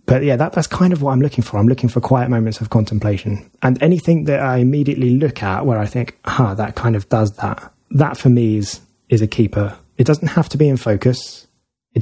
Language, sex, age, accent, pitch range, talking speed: English, male, 20-39, British, 110-130 Hz, 235 wpm